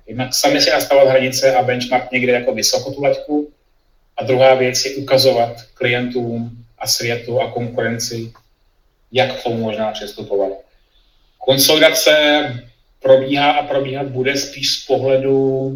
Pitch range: 115-130 Hz